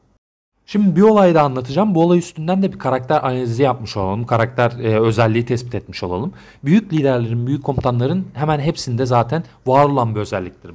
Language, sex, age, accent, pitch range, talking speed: Turkish, male, 40-59, native, 110-145 Hz, 175 wpm